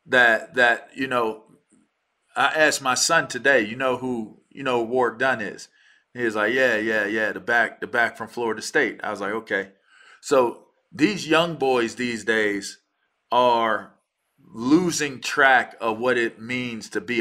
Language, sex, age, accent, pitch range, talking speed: English, male, 40-59, American, 115-150 Hz, 170 wpm